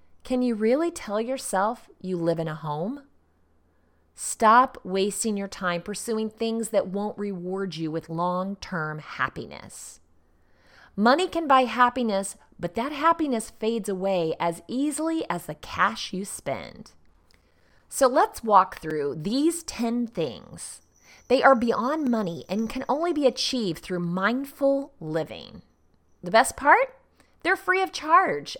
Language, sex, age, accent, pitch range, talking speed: English, female, 30-49, American, 180-260 Hz, 135 wpm